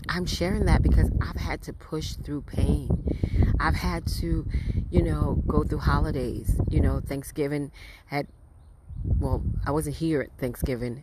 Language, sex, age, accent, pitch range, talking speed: English, female, 30-49, American, 90-150 Hz, 150 wpm